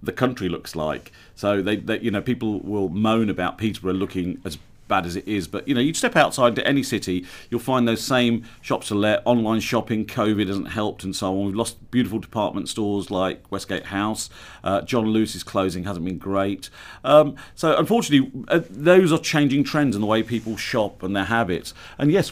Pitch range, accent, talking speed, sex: 100-130 Hz, British, 205 wpm, male